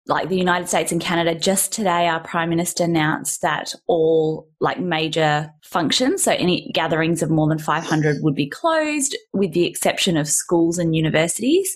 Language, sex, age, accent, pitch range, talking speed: English, female, 10-29, Australian, 175-220 Hz, 175 wpm